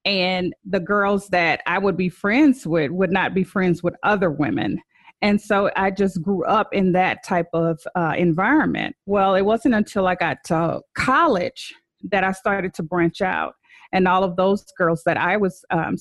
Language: English